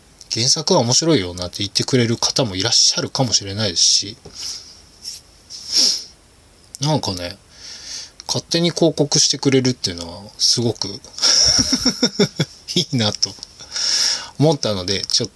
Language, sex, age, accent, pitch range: Japanese, male, 20-39, native, 95-145 Hz